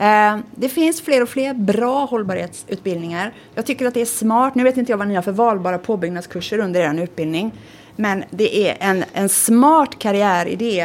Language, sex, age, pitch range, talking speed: Swedish, female, 30-49, 175-225 Hz, 185 wpm